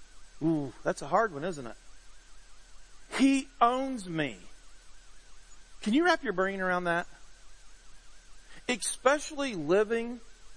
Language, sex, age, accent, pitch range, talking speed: English, male, 50-69, American, 145-210 Hz, 110 wpm